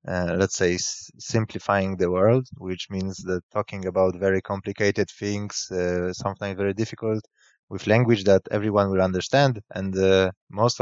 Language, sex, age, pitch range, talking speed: English, male, 20-39, 90-105 Hz, 155 wpm